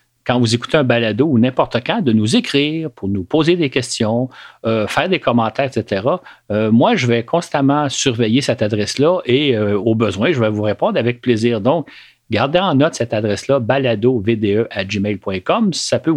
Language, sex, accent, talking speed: French, male, Canadian, 180 wpm